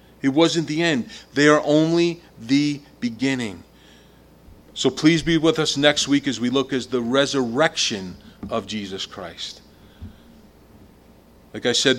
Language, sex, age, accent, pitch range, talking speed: English, male, 40-59, American, 105-145 Hz, 140 wpm